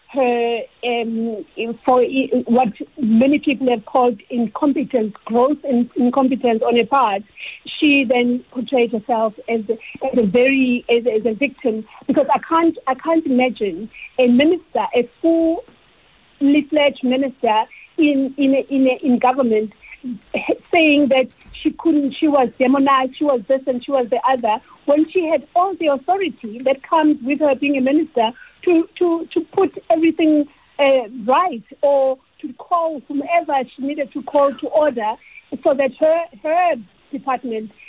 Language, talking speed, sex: English, 155 wpm, female